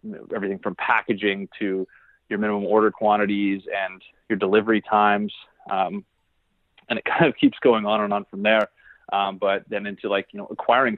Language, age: English, 20-39